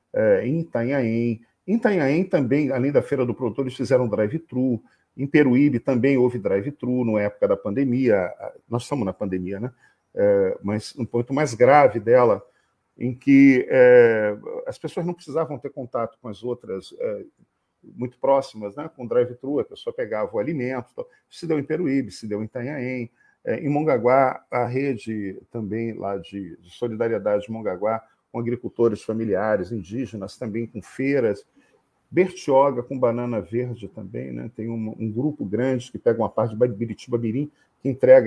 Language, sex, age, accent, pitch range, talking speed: Portuguese, male, 40-59, Brazilian, 115-165 Hz, 165 wpm